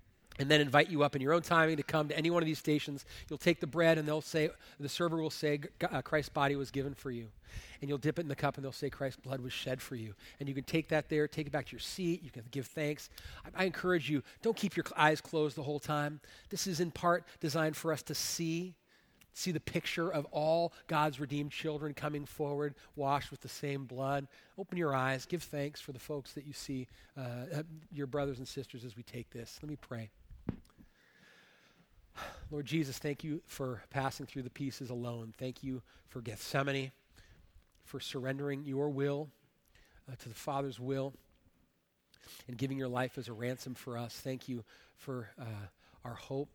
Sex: male